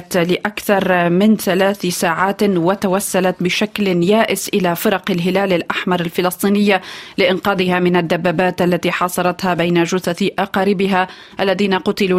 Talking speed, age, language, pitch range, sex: 110 wpm, 30-49, Arabic, 175-195 Hz, female